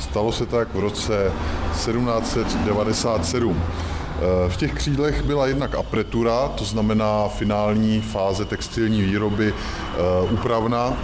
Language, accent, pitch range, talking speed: Czech, native, 95-115 Hz, 105 wpm